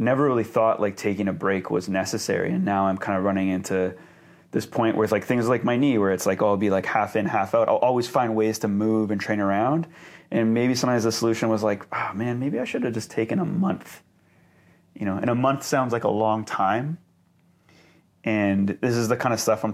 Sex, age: male, 30-49